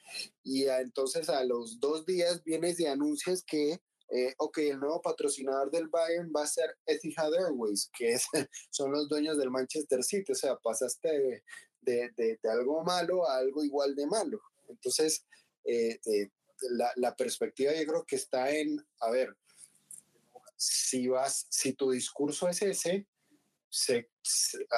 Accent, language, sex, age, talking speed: Mexican, Spanish, male, 30-49, 160 wpm